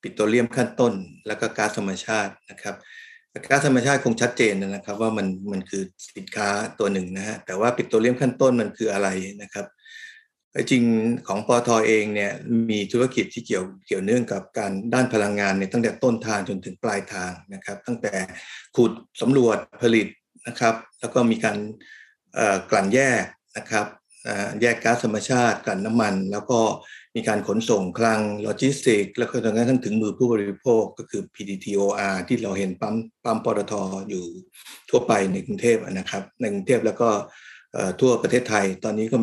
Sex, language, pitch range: male, Thai, 100-120 Hz